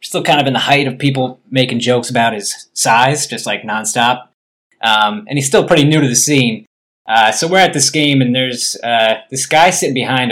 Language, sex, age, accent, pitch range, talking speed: English, male, 20-39, American, 120-150 Hz, 220 wpm